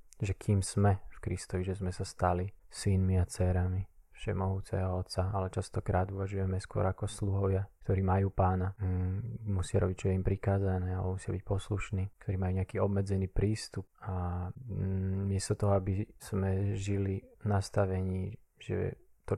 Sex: male